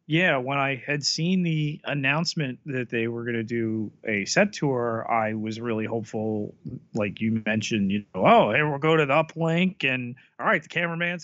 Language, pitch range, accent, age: English, 115-145 Hz, American, 30-49